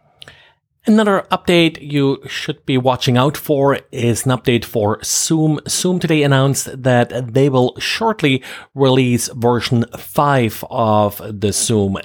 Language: English